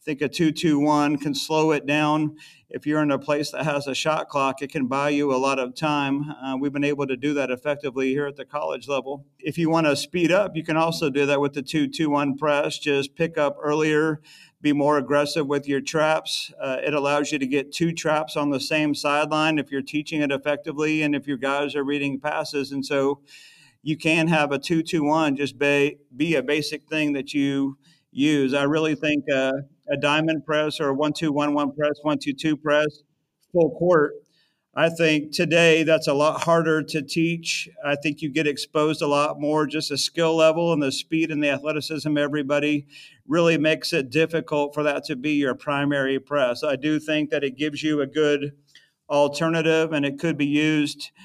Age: 50-69